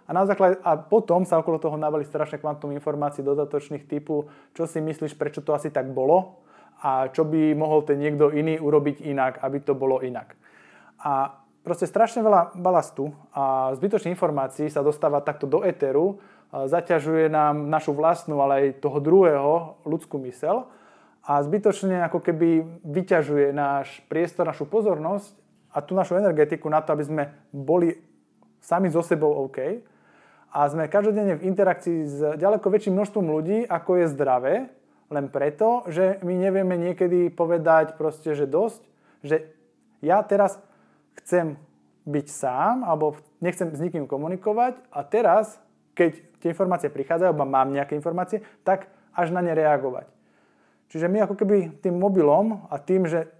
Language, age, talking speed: Slovak, 20-39, 150 wpm